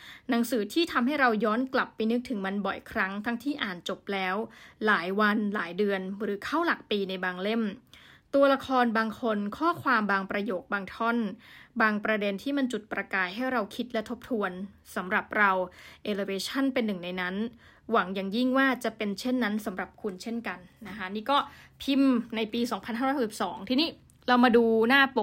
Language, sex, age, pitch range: Thai, female, 20-39, 205-255 Hz